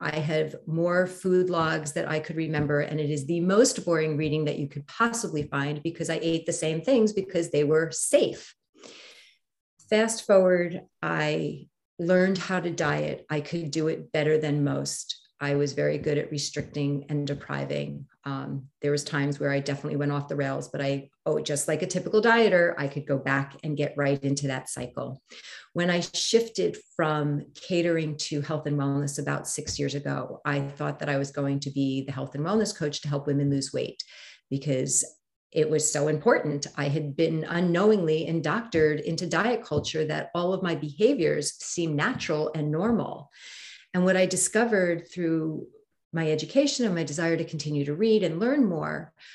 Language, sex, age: English, female, 40-59